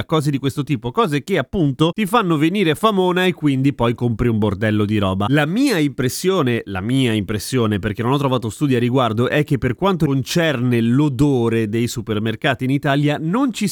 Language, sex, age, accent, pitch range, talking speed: Italian, male, 30-49, native, 120-160 Hz, 190 wpm